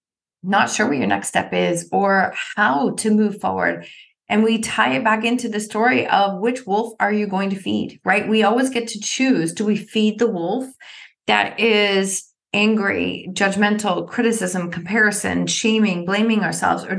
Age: 30-49